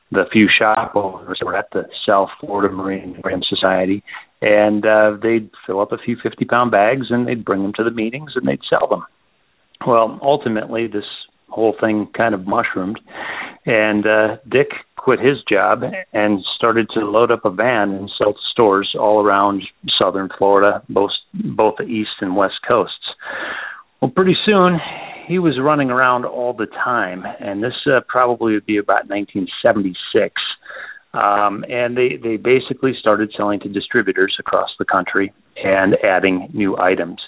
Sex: male